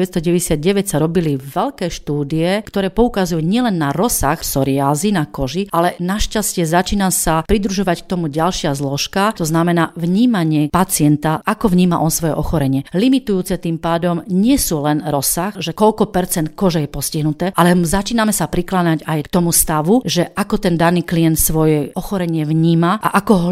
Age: 40-59